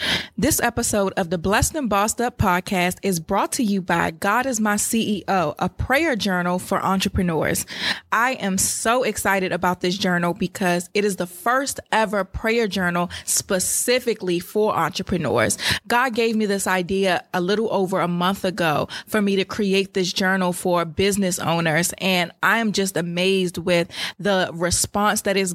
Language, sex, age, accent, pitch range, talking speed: English, female, 20-39, American, 180-210 Hz, 165 wpm